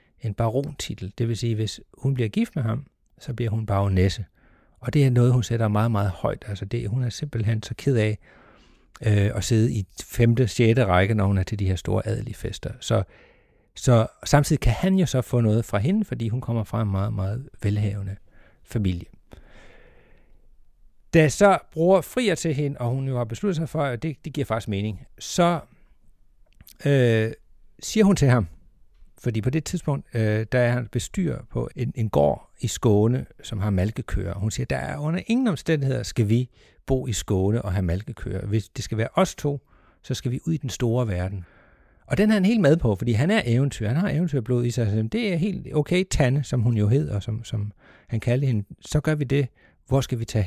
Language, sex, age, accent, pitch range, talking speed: Danish, male, 60-79, native, 110-145 Hz, 210 wpm